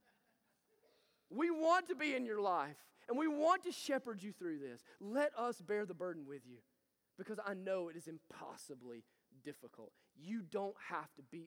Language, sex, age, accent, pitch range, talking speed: English, male, 30-49, American, 205-275 Hz, 180 wpm